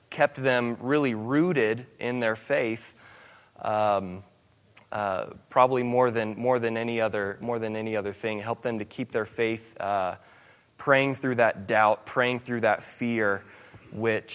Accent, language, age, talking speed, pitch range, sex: American, English, 20-39, 135 wpm, 110-140 Hz, male